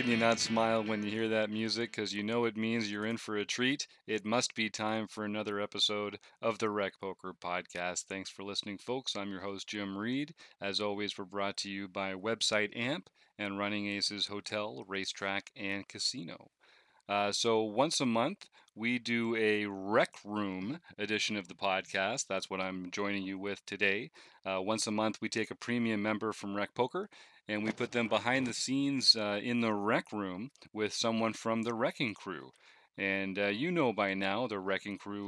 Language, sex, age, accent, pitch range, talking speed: English, male, 40-59, American, 100-110 Hz, 195 wpm